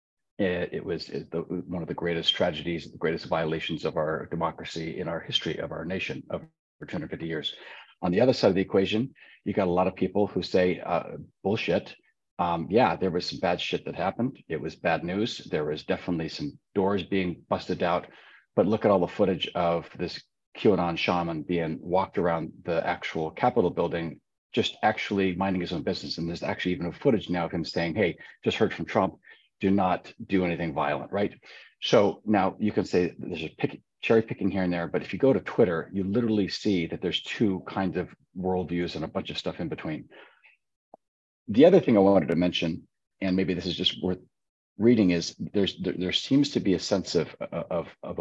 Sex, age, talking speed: male, 40-59, 205 wpm